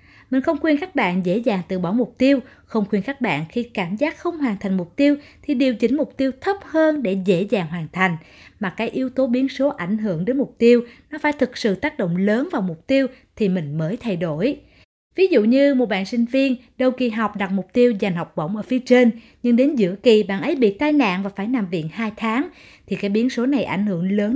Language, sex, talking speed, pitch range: Vietnamese, female, 255 wpm, 200-270 Hz